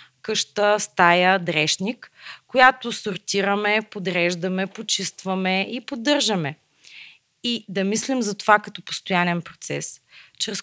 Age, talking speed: 20-39, 100 wpm